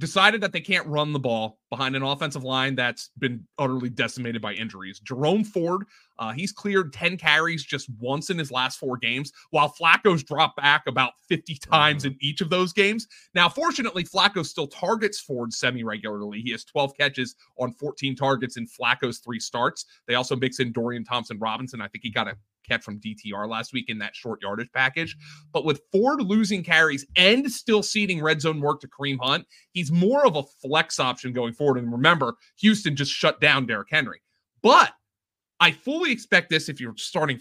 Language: English